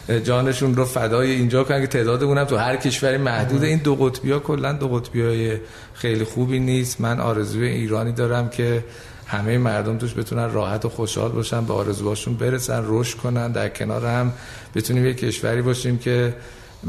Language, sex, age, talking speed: Persian, male, 50-69, 160 wpm